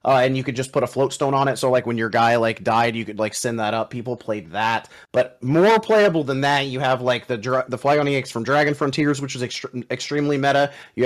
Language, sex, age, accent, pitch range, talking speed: English, male, 30-49, American, 120-145 Hz, 260 wpm